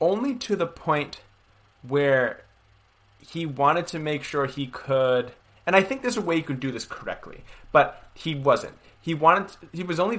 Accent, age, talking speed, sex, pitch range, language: American, 30-49, 185 wpm, male, 105-145 Hz, English